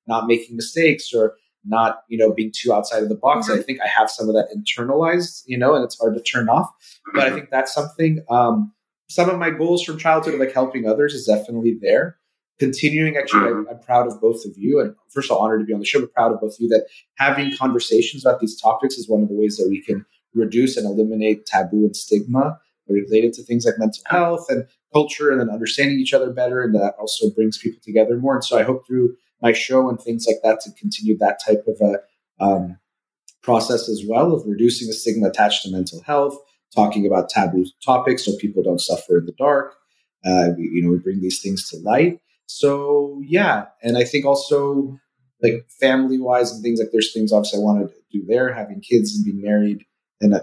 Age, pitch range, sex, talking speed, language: 30-49, 110-140 Hz, male, 225 wpm, English